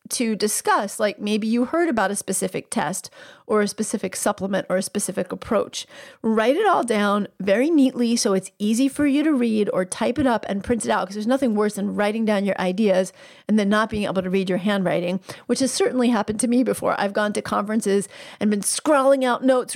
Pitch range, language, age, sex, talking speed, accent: 195-240 Hz, English, 40-59, female, 220 wpm, American